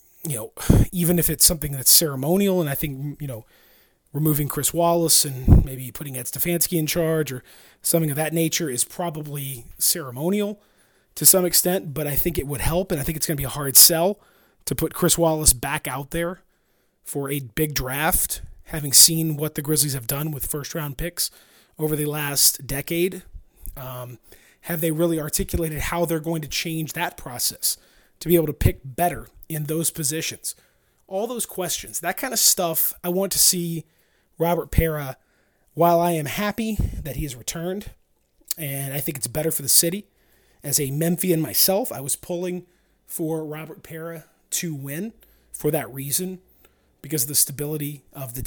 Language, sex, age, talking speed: English, male, 30-49, 180 wpm